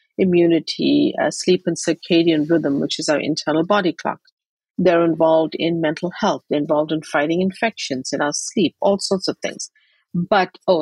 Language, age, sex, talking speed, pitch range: English, 50-69, female, 170 wpm, 155-200 Hz